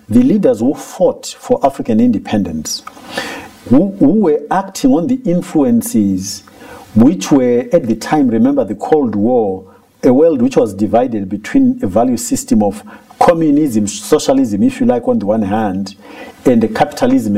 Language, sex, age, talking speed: English, male, 50-69, 150 wpm